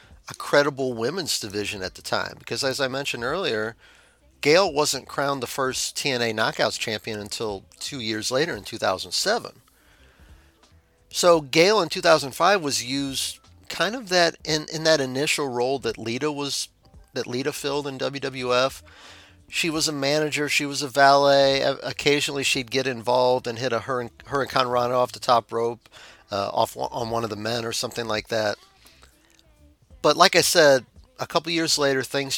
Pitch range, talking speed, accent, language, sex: 110-140 Hz, 175 wpm, American, English, male